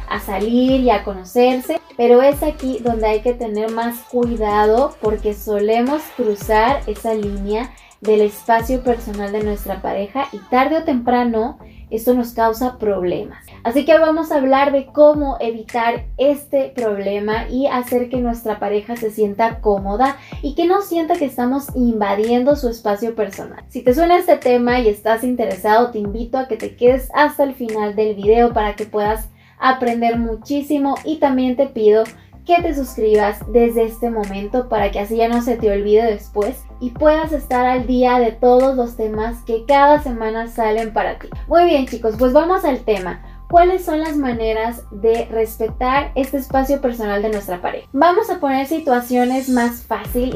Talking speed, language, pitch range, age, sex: 170 wpm, Spanish, 215-265 Hz, 20-39, female